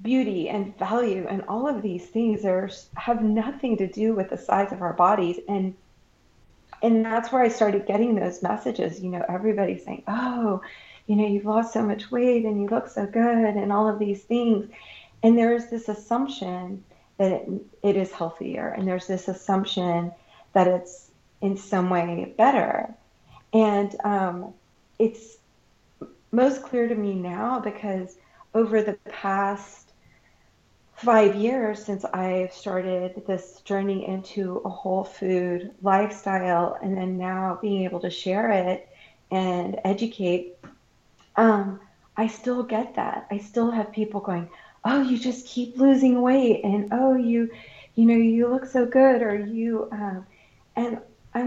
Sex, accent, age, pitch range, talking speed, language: female, American, 30-49, 190-230 Hz, 155 wpm, English